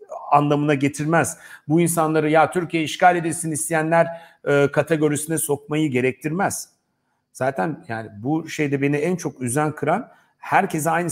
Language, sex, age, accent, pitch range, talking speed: Turkish, male, 50-69, native, 125-165 Hz, 130 wpm